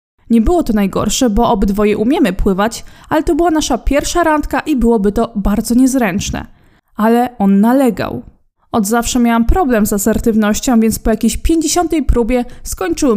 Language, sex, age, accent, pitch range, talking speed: Polish, female, 20-39, native, 215-285 Hz, 155 wpm